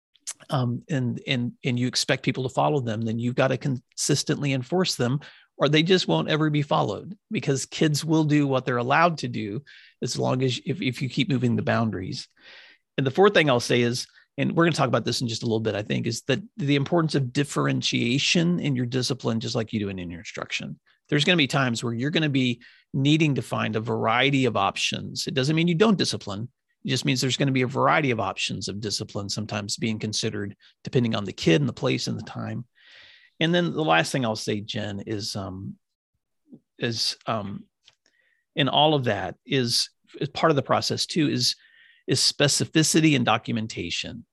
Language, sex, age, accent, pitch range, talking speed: English, male, 40-59, American, 115-150 Hz, 215 wpm